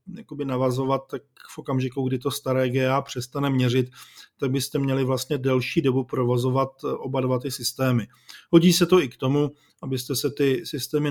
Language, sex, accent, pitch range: Czech, male, native, 125-145 Hz